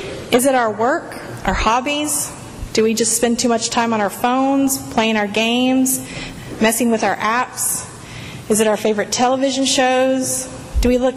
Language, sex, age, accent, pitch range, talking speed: English, female, 30-49, American, 220-260 Hz, 170 wpm